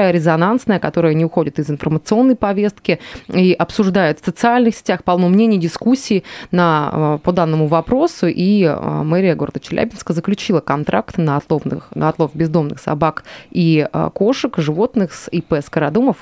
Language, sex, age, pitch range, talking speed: Russian, female, 20-39, 160-210 Hz, 130 wpm